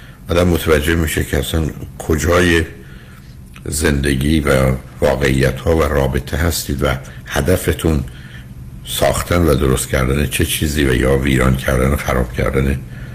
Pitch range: 65-75 Hz